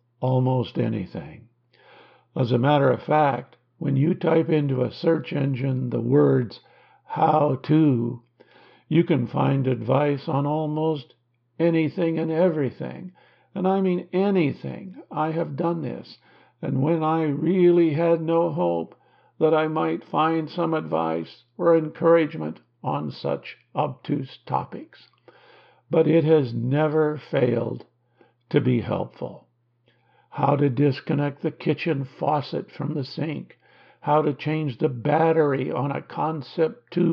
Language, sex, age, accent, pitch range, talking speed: English, male, 60-79, American, 130-160 Hz, 130 wpm